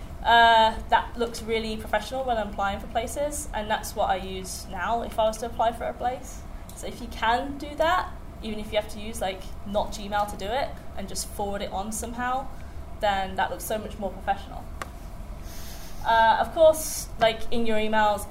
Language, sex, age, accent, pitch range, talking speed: English, female, 20-39, British, 205-250 Hz, 205 wpm